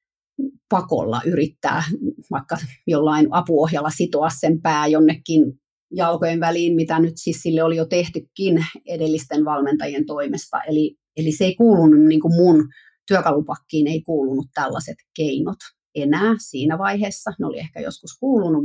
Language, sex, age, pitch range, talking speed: Finnish, female, 30-49, 155-195 Hz, 130 wpm